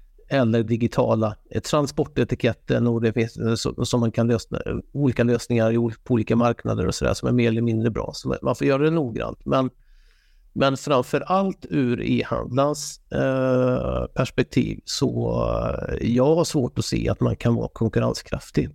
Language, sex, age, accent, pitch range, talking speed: English, male, 50-69, Swedish, 110-130 Hz, 145 wpm